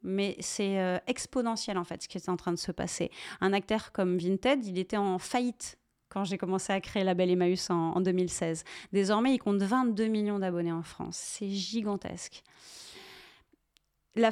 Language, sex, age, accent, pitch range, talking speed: French, female, 30-49, French, 185-235 Hz, 185 wpm